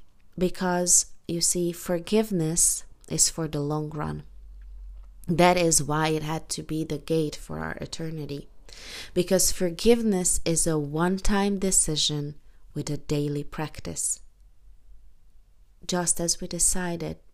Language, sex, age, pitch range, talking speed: English, female, 30-49, 155-200 Hz, 120 wpm